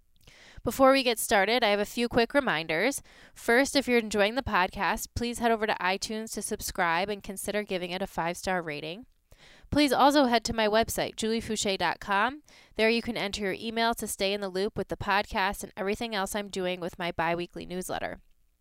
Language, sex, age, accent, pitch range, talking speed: English, female, 20-39, American, 185-235 Hz, 195 wpm